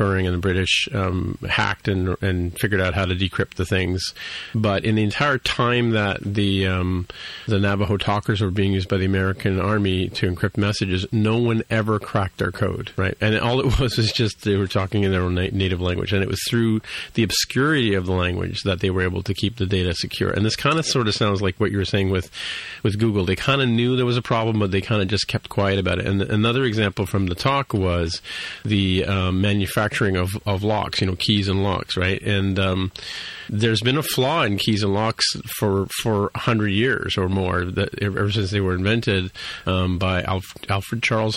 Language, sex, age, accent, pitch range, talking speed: English, male, 40-59, American, 95-115 Hz, 225 wpm